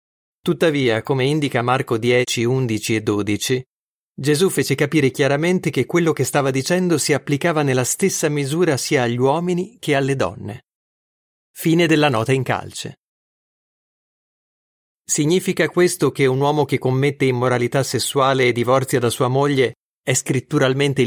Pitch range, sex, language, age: 125-160 Hz, male, Italian, 40-59